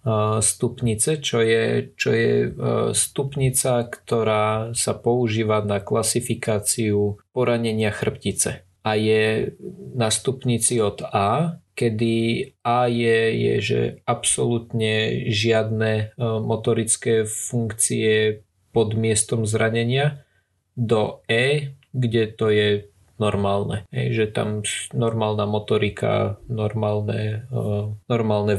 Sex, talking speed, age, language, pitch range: male, 90 wpm, 20-39, Slovak, 105-120 Hz